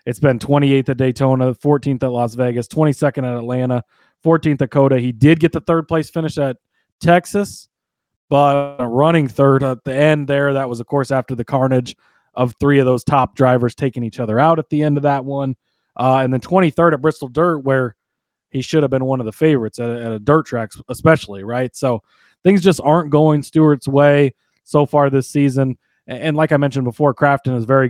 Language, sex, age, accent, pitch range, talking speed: English, male, 30-49, American, 125-150 Hz, 210 wpm